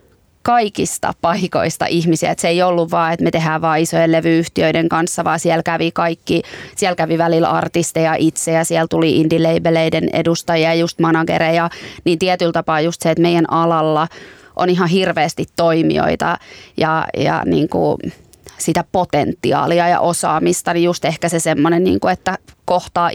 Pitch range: 165-175 Hz